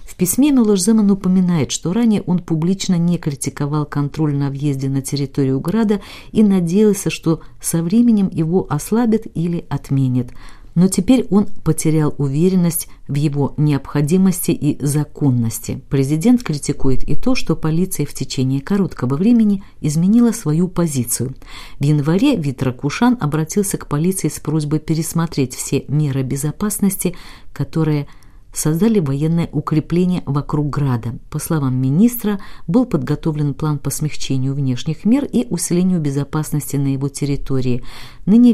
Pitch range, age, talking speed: 135-180 Hz, 50-69, 130 wpm